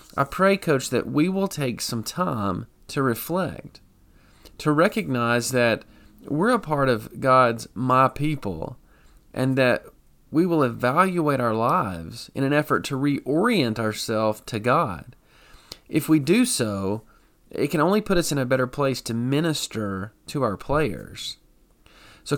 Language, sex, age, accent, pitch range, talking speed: English, male, 30-49, American, 110-145 Hz, 145 wpm